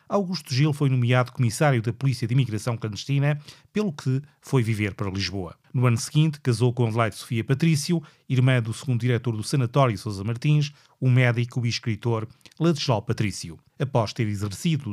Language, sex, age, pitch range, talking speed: Portuguese, male, 30-49, 115-145 Hz, 170 wpm